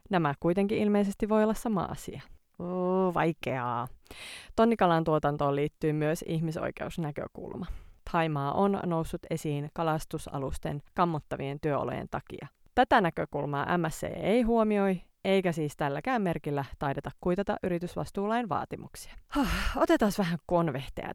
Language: Finnish